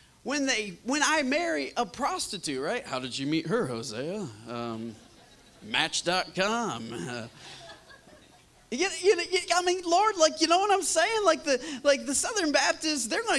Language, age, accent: English, 30-49, American